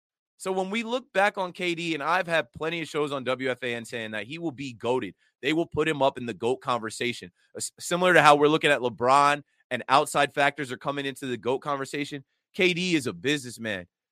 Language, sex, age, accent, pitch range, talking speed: English, male, 30-49, American, 120-155 Hz, 215 wpm